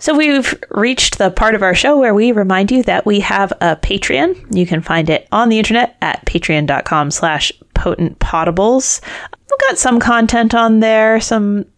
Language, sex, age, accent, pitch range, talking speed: English, female, 30-49, American, 190-245 Hz, 185 wpm